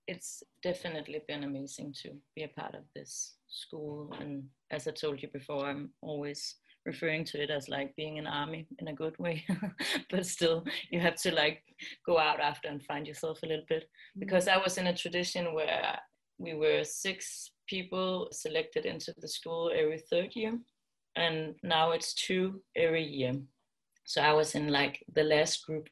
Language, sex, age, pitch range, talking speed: English, female, 30-49, 150-185 Hz, 180 wpm